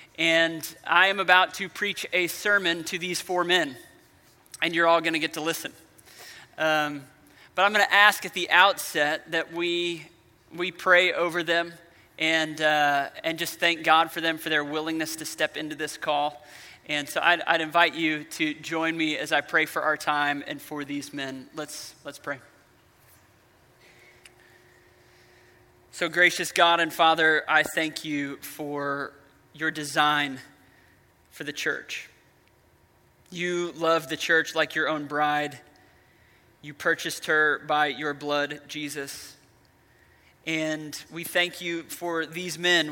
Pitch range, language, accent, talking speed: 145-170 Hz, English, American, 150 wpm